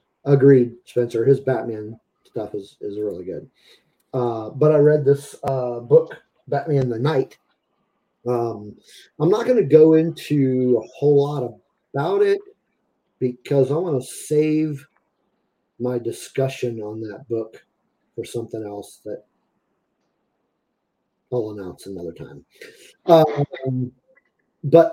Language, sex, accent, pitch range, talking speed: English, male, American, 125-155 Hz, 125 wpm